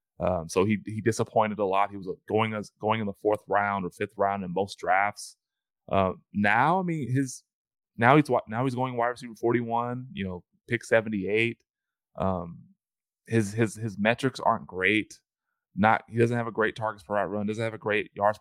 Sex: male